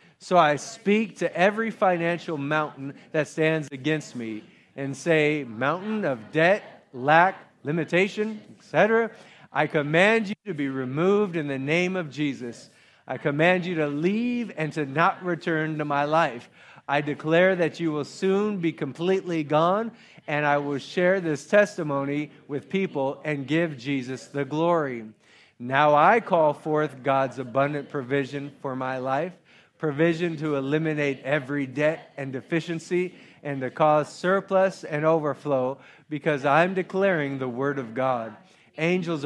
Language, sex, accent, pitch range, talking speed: English, male, American, 140-170 Hz, 145 wpm